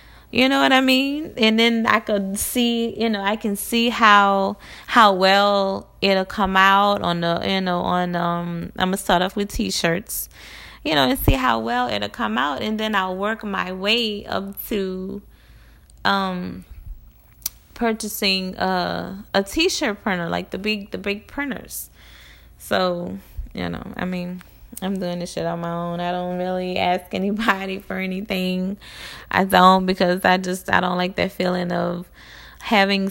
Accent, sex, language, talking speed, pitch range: American, female, English, 170 wpm, 170-200 Hz